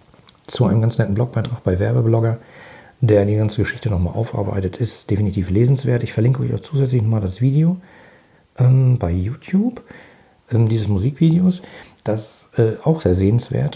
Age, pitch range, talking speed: 50-69, 100-125 Hz, 155 wpm